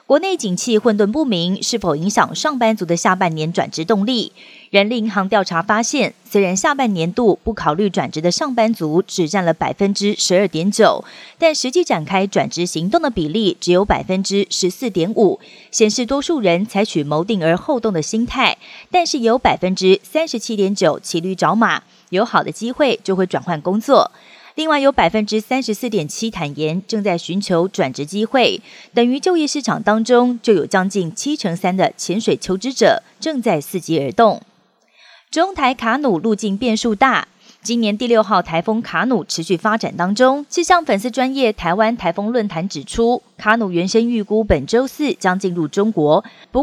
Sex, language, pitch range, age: female, Chinese, 185-250 Hz, 30-49